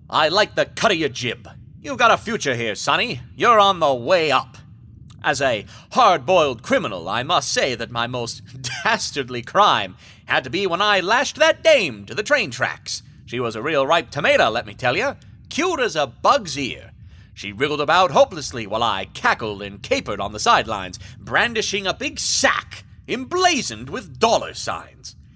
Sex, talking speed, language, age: male, 180 wpm, English, 30-49